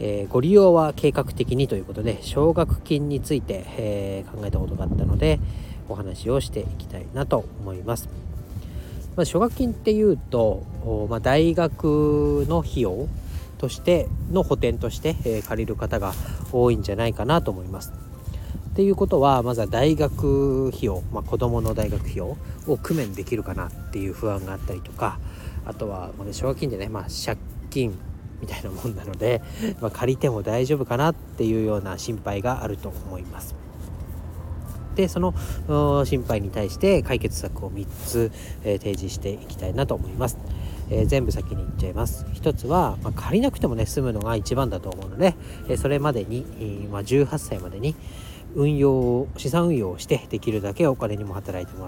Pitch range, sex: 95-130 Hz, male